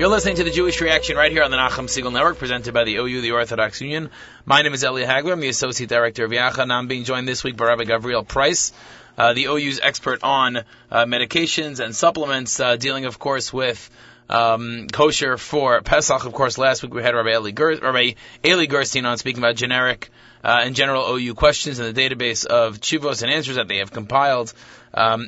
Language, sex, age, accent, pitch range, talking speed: English, male, 30-49, American, 120-140 Hz, 210 wpm